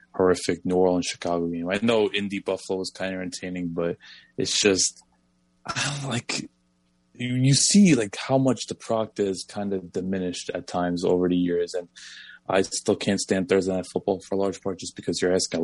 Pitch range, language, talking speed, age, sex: 85-95 Hz, English, 195 wpm, 20-39, male